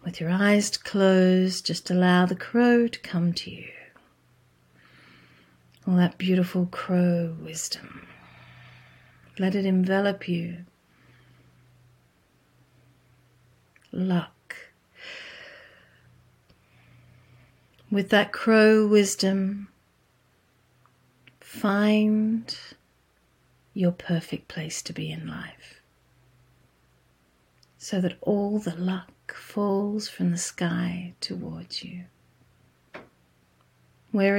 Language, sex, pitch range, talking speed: English, female, 125-200 Hz, 80 wpm